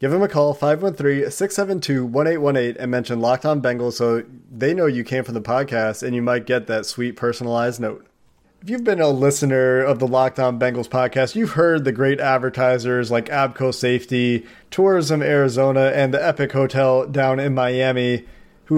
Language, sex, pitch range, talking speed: English, male, 125-145 Hz, 175 wpm